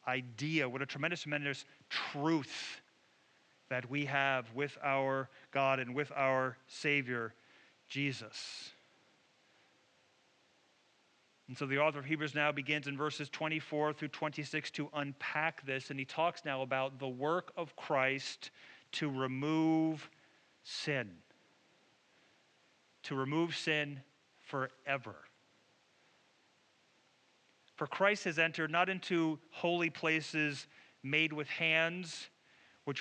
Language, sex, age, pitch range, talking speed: English, male, 40-59, 140-170 Hz, 110 wpm